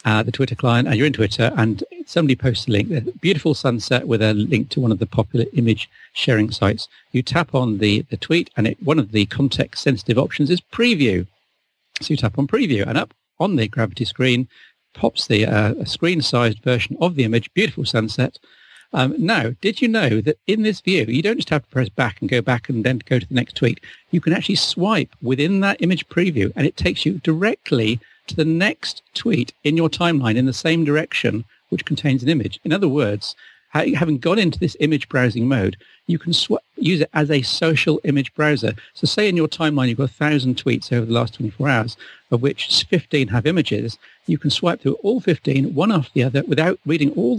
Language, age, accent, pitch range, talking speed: English, 50-69, British, 115-160 Hz, 210 wpm